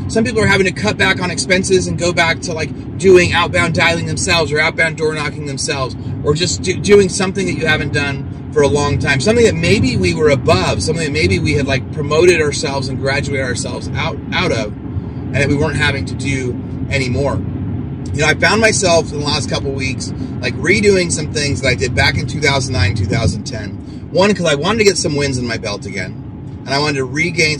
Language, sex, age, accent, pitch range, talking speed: English, male, 30-49, American, 130-160 Hz, 220 wpm